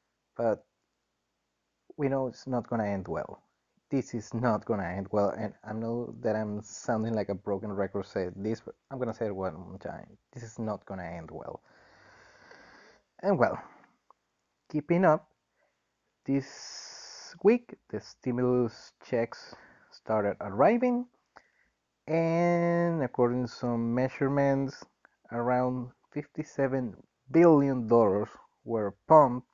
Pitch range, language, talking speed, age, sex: 105-140 Hz, English, 125 wpm, 30-49, male